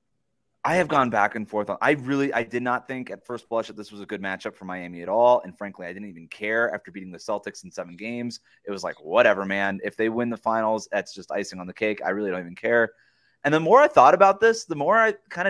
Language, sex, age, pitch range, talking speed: English, male, 20-39, 115-155 Hz, 280 wpm